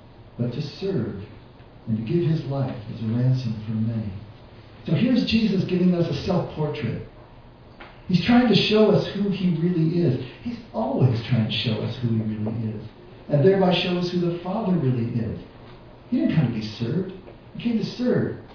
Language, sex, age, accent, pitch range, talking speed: English, male, 50-69, American, 120-170 Hz, 190 wpm